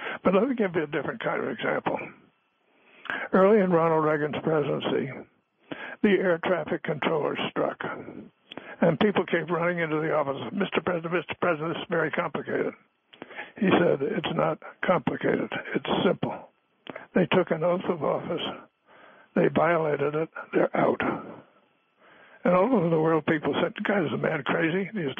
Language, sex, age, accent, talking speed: English, male, 60-79, American, 155 wpm